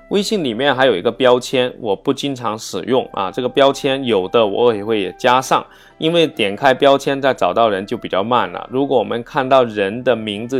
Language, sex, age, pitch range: Chinese, male, 20-39, 105-135 Hz